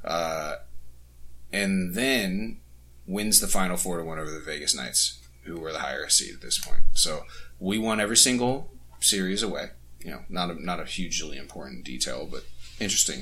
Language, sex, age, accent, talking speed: English, male, 30-49, American, 175 wpm